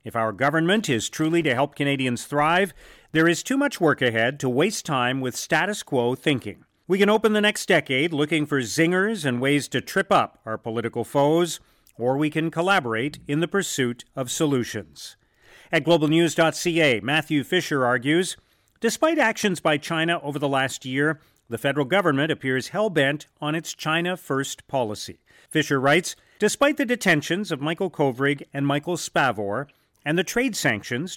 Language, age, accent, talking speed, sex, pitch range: English, 40-59, American, 165 wpm, male, 125-175 Hz